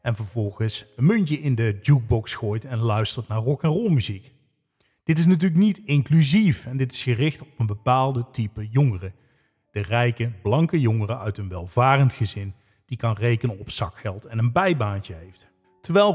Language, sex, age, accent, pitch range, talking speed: English, male, 40-59, Dutch, 115-160 Hz, 165 wpm